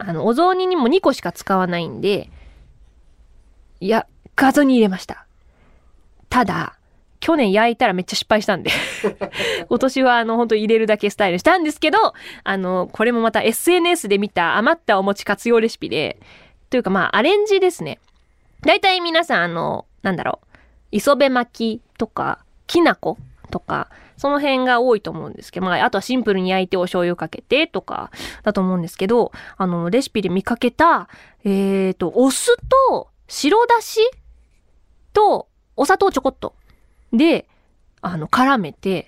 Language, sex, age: Japanese, female, 20-39